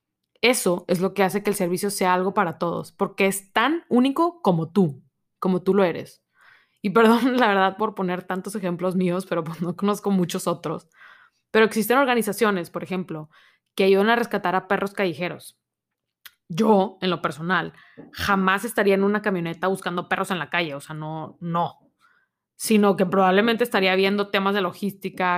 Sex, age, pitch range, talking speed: female, 20-39, 175-210 Hz, 175 wpm